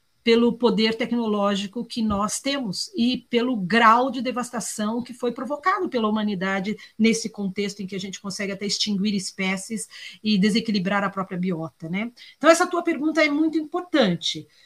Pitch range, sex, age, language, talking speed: 195-255 Hz, female, 40-59, Portuguese, 160 wpm